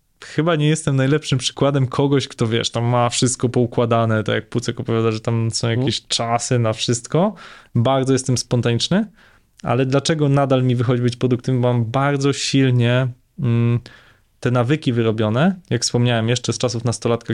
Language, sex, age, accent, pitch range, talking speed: Polish, male, 20-39, native, 115-140 Hz, 155 wpm